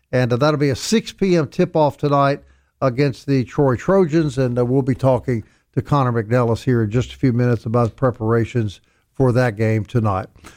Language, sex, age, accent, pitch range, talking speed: English, male, 50-69, American, 130-175 Hz, 185 wpm